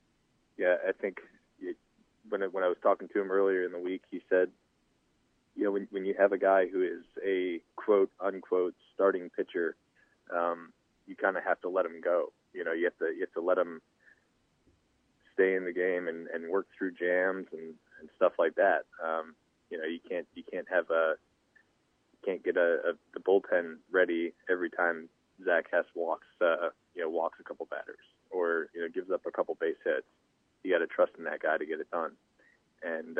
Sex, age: male, 30-49